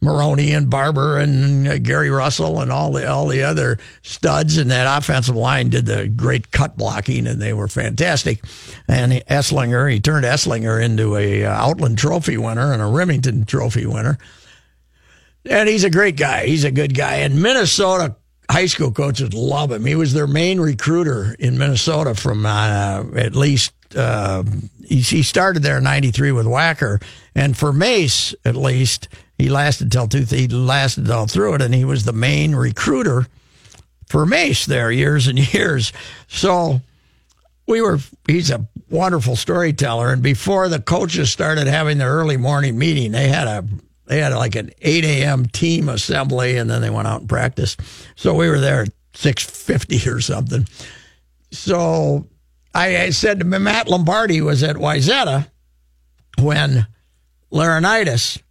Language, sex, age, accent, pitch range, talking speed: English, male, 60-79, American, 115-150 Hz, 165 wpm